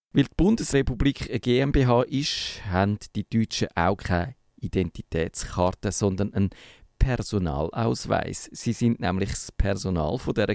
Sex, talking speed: male, 120 wpm